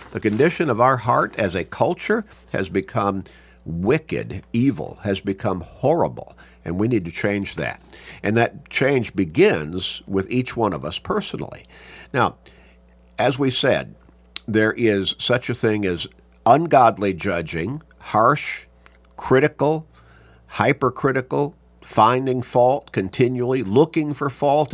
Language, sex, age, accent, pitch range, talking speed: English, male, 50-69, American, 95-130 Hz, 125 wpm